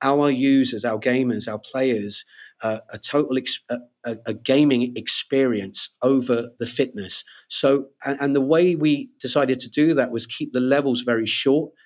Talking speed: 165 wpm